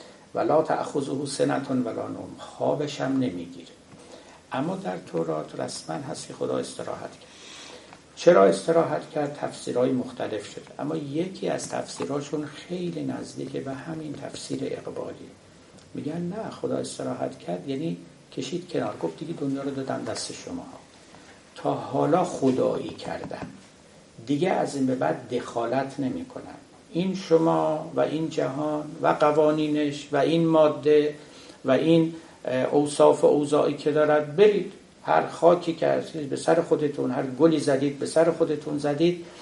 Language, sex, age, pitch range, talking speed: Persian, male, 60-79, 140-165 Hz, 140 wpm